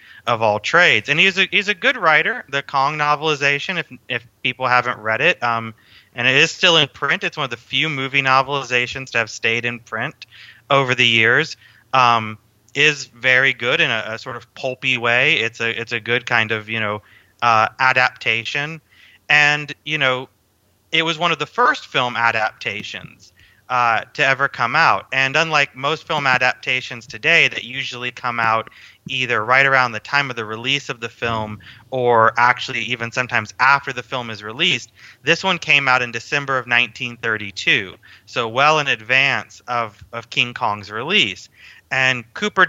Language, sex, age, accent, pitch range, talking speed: English, male, 30-49, American, 115-140 Hz, 180 wpm